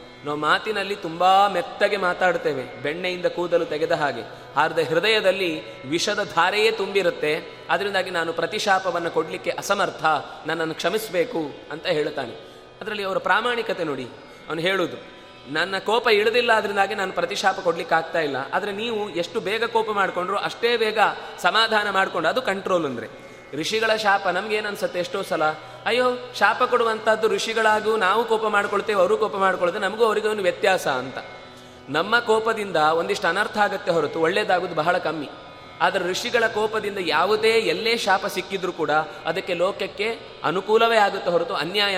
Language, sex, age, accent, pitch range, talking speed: Kannada, male, 20-39, native, 175-220 Hz, 135 wpm